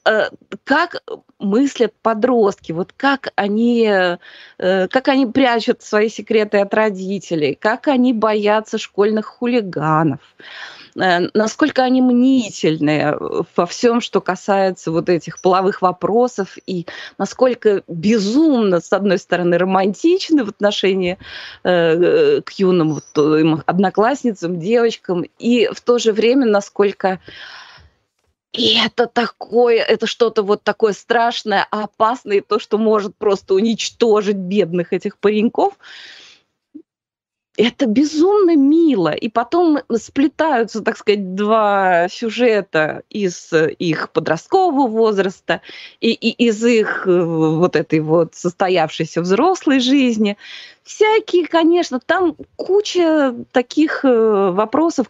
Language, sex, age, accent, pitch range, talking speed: Russian, female, 20-39, native, 190-250 Hz, 105 wpm